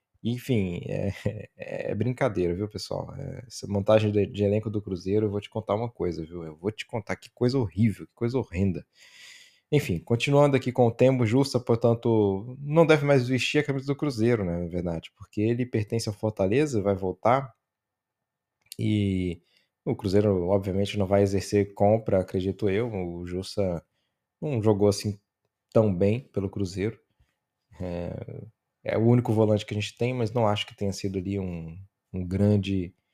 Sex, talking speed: male, 165 wpm